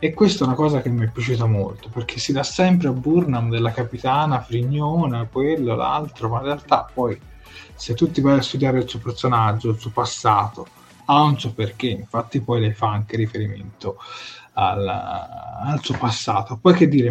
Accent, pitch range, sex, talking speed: native, 115-140 Hz, male, 190 wpm